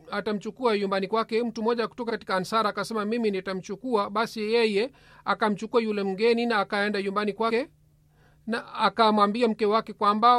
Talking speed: 145 wpm